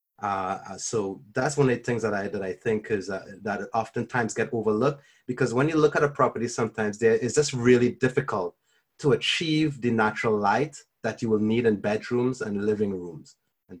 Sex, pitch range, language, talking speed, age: male, 105-125 Hz, English, 200 wpm, 30-49